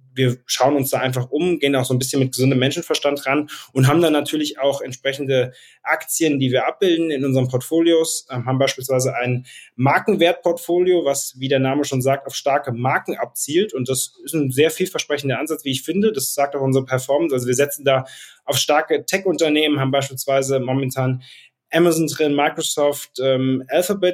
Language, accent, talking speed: German, German, 180 wpm